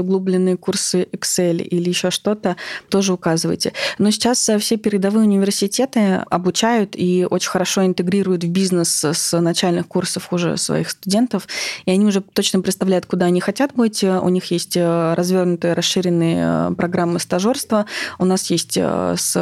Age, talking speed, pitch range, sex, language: 20-39, 140 wpm, 175-195 Hz, female, Russian